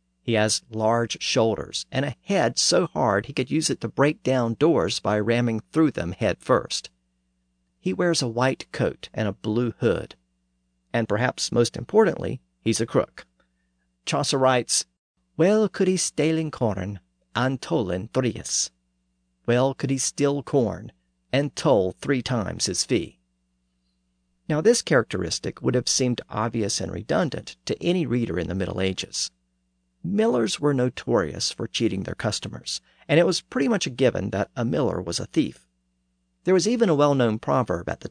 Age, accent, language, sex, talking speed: 50-69, American, English, male, 165 wpm